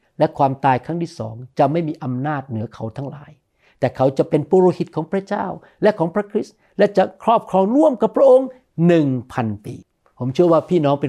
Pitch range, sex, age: 135-185 Hz, male, 60-79